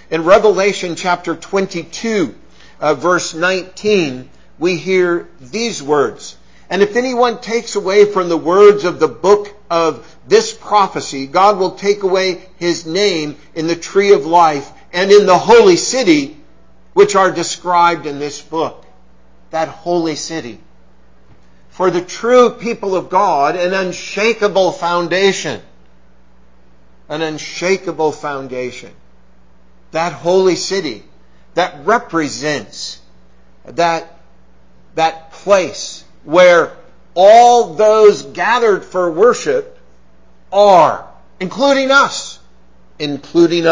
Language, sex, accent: English, male, American